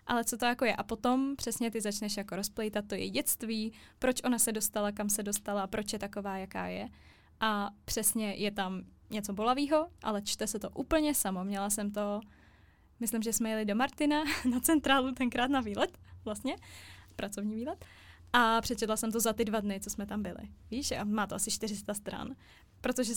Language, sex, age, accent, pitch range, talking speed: Czech, female, 10-29, native, 205-245 Hz, 195 wpm